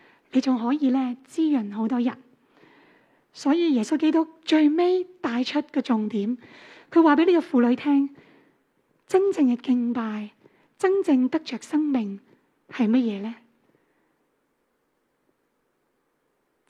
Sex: female